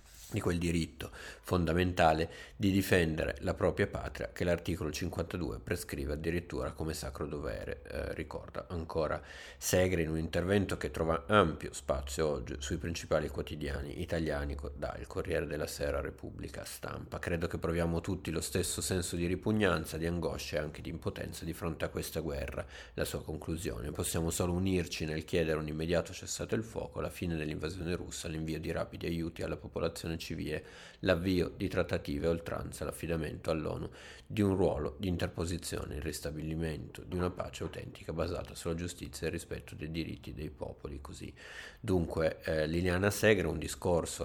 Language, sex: Italian, male